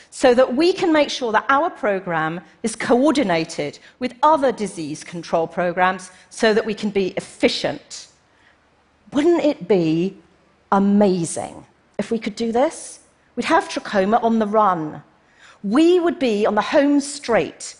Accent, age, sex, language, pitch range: British, 40-59, female, Chinese, 190-280 Hz